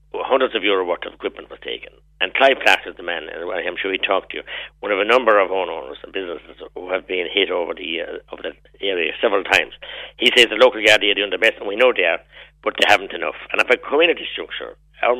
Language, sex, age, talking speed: English, male, 60-79, 255 wpm